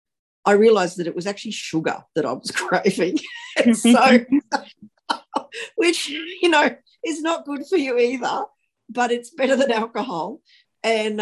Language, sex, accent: English, female, Australian